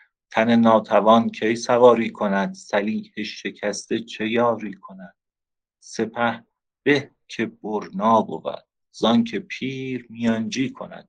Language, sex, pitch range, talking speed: English, male, 95-115 Hz, 105 wpm